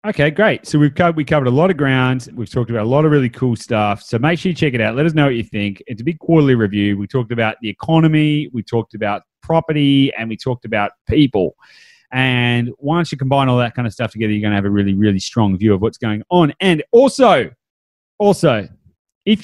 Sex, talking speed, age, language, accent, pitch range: male, 240 wpm, 30-49, English, Australian, 115-150 Hz